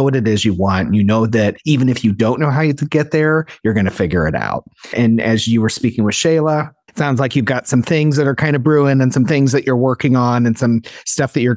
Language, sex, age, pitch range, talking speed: English, male, 30-49, 105-130 Hz, 285 wpm